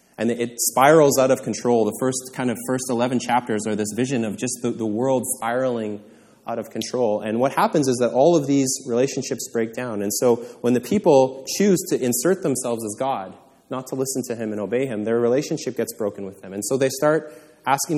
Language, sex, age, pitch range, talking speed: English, male, 20-39, 110-135 Hz, 220 wpm